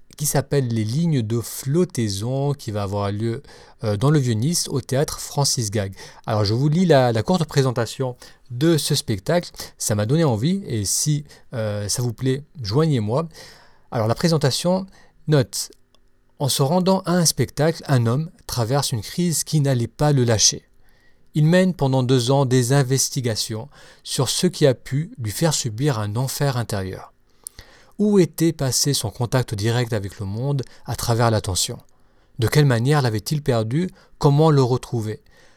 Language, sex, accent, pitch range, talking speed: French, male, French, 115-155 Hz, 165 wpm